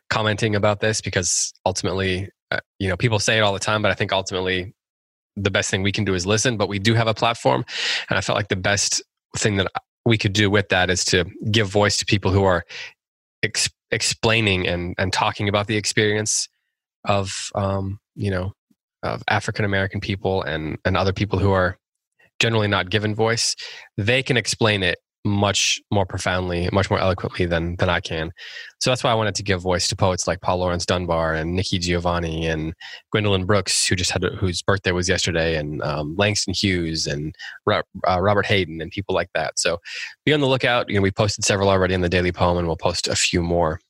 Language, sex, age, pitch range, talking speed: English, male, 20-39, 90-110 Hz, 210 wpm